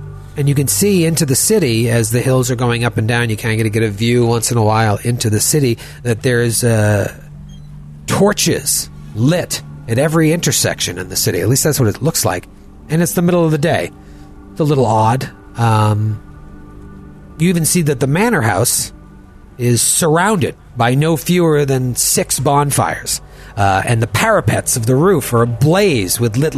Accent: American